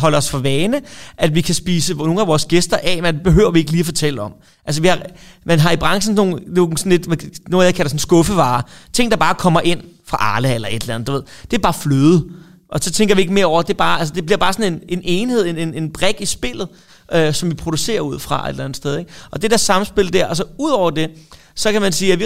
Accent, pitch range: native, 150-185 Hz